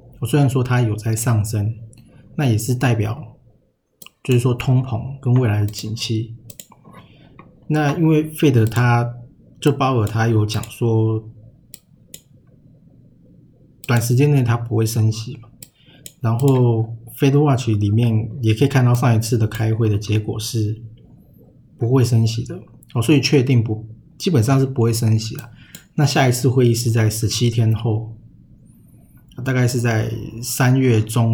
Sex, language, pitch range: male, Chinese, 110-130 Hz